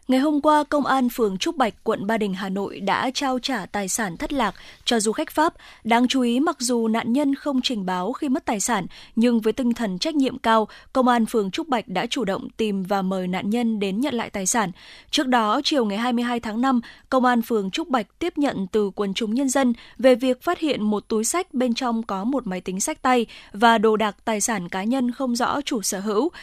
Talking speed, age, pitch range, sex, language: 245 wpm, 20-39, 210-260 Hz, female, Vietnamese